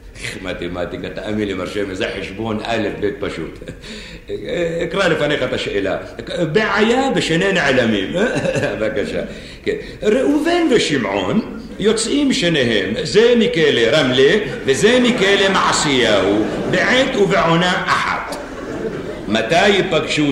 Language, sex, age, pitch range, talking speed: Hebrew, male, 60-79, 145-225 Hz, 95 wpm